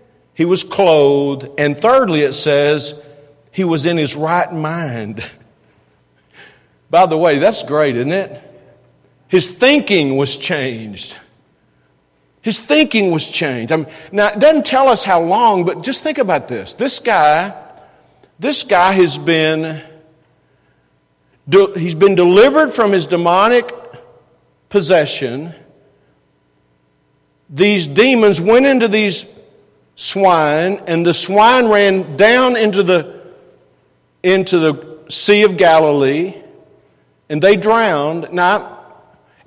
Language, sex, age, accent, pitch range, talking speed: English, male, 50-69, American, 150-205 Hz, 115 wpm